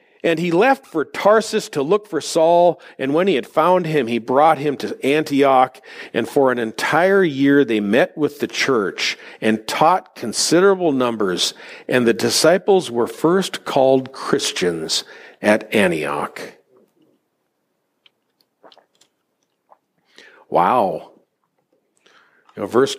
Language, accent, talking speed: English, American, 115 wpm